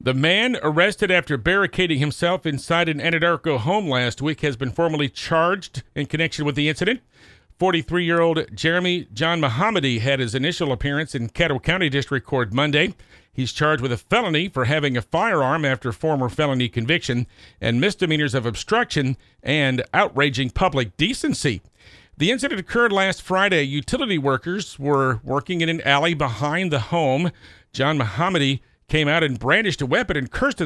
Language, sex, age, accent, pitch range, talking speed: English, male, 50-69, American, 130-170 Hz, 160 wpm